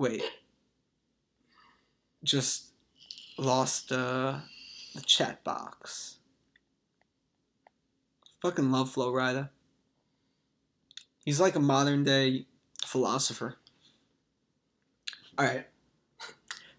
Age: 20-39